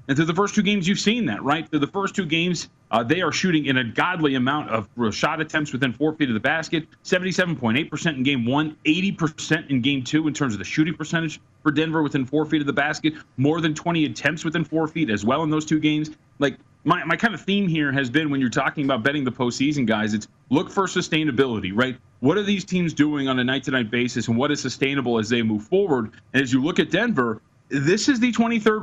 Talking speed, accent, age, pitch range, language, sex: 240 wpm, American, 30-49, 135-170 Hz, English, male